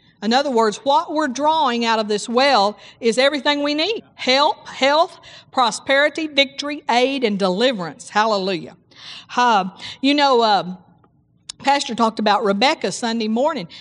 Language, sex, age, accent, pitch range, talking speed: English, female, 50-69, American, 210-265 Hz, 140 wpm